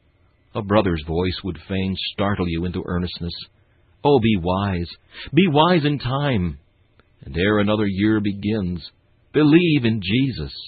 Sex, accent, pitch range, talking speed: male, American, 90-115 Hz, 135 wpm